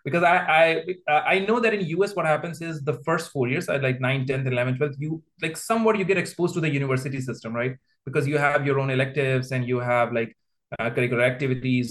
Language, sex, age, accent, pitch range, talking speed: English, male, 30-49, Indian, 130-160 Hz, 220 wpm